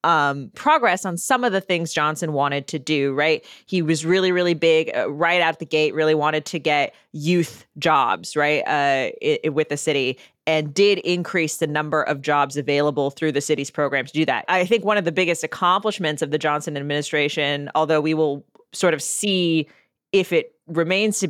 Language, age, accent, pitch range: English, 20-39, American, 150-170 Hz